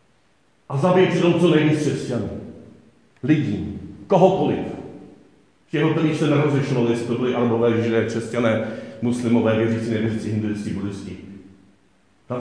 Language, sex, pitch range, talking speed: Czech, male, 120-145 Hz, 120 wpm